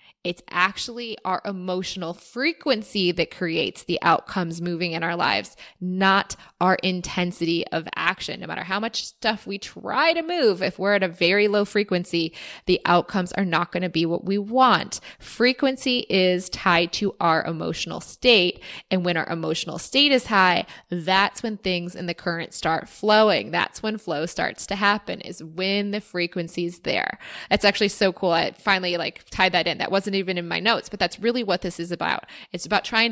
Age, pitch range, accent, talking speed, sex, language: 20-39, 175-210 Hz, American, 190 wpm, female, English